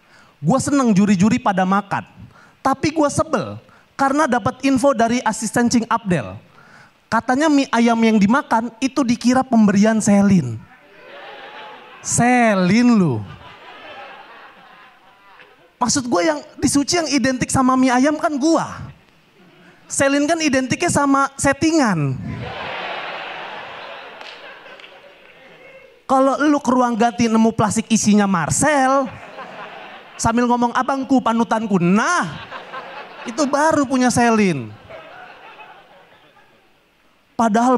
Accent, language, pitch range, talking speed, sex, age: native, Indonesian, 205-260 Hz, 95 wpm, male, 30-49